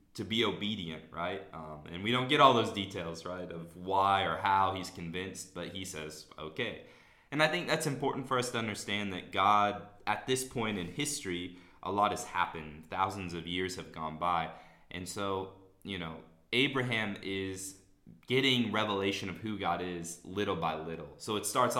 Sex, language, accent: male, English, American